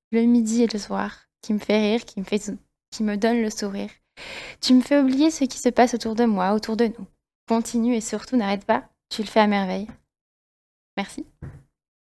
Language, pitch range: French, 205-240 Hz